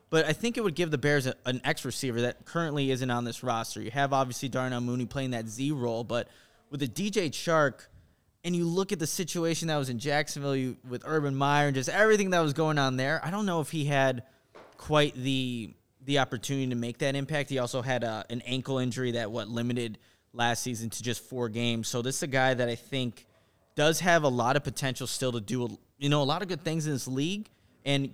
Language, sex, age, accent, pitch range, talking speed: English, male, 20-39, American, 120-155 Hz, 240 wpm